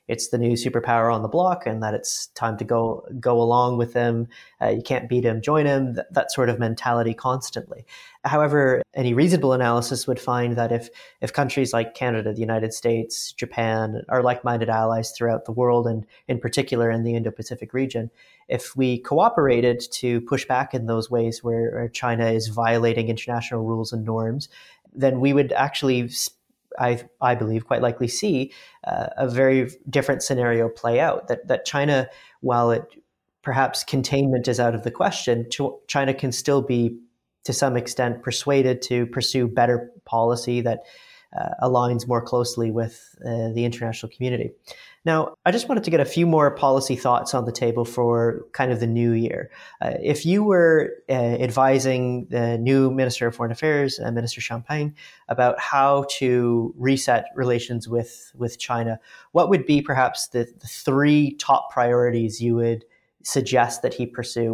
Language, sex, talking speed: English, male, 170 wpm